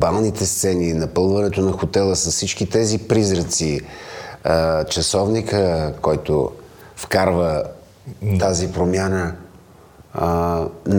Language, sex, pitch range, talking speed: Bulgarian, male, 85-100 Hz, 80 wpm